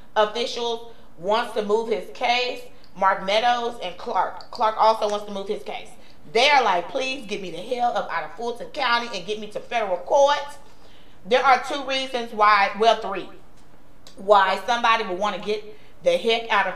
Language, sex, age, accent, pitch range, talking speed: English, female, 40-59, American, 200-245 Hz, 185 wpm